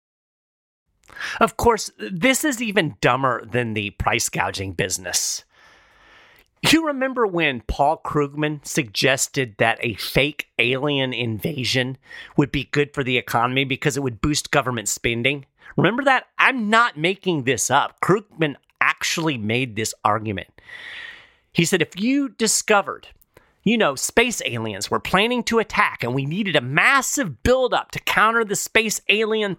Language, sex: English, male